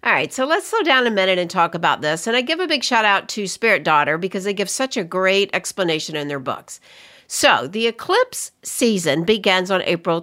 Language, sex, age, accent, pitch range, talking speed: English, female, 60-79, American, 190-265 Hz, 230 wpm